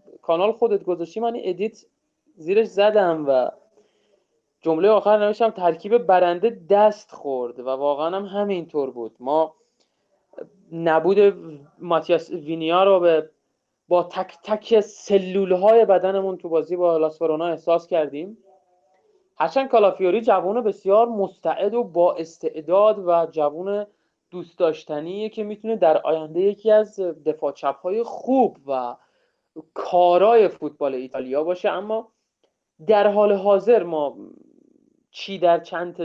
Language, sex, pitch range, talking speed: Persian, male, 160-210 Hz, 115 wpm